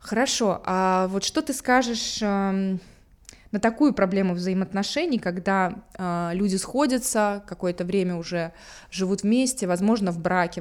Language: Russian